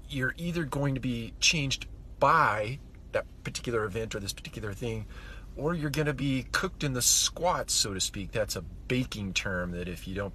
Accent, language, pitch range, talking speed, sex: American, English, 90-125 Hz, 195 wpm, male